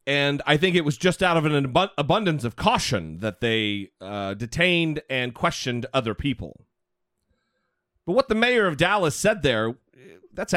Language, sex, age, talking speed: English, male, 40-59, 165 wpm